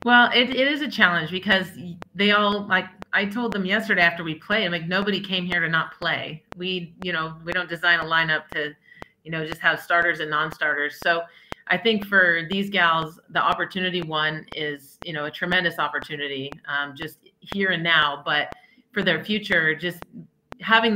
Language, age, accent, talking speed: English, 30-49, American, 190 wpm